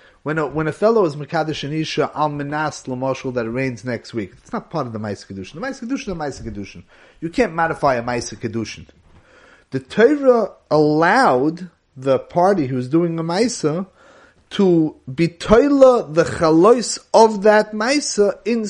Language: English